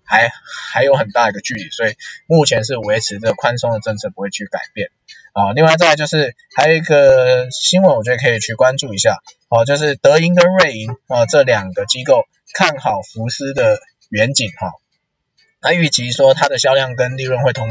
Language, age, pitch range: Chinese, 20-39, 115-150 Hz